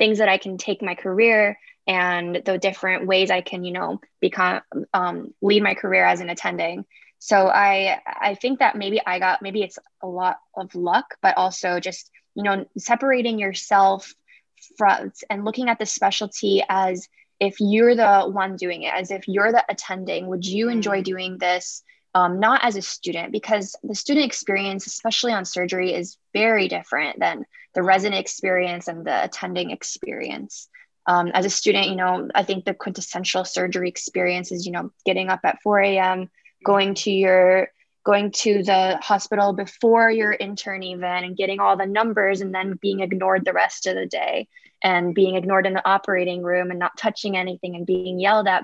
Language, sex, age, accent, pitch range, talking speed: English, female, 10-29, American, 185-210 Hz, 185 wpm